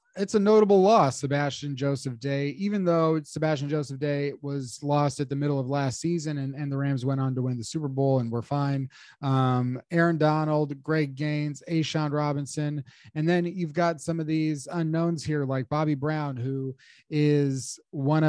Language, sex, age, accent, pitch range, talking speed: English, male, 30-49, American, 130-150 Hz, 185 wpm